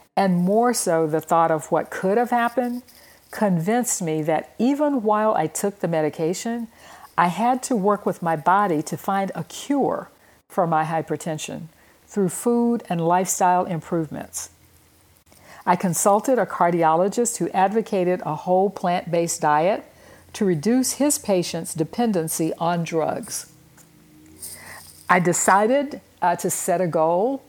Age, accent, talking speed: 60-79, American, 135 wpm